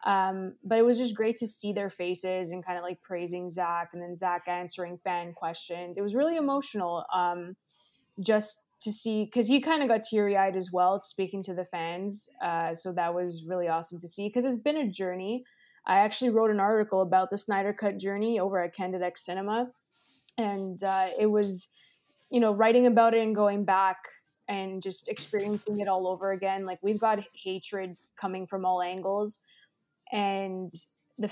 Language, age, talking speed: English, 20-39, 190 wpm